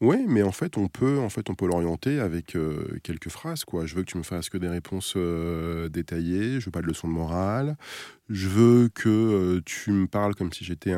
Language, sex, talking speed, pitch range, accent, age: French, male, 245 wpm, 85-105 Hz, French, 20-39